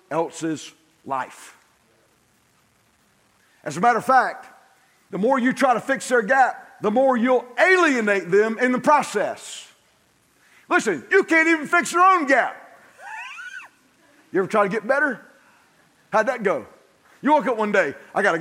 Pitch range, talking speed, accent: 215-325 Hz, 155 wpm, American